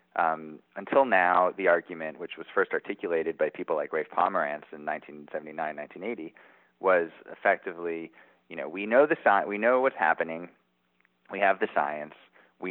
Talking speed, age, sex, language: 160 wpm, 30-49, male, English